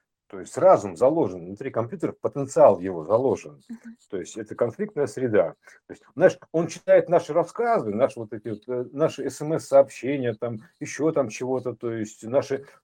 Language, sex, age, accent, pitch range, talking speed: Russian, male, 50-69, native, 115-160 Hz, 150 wpm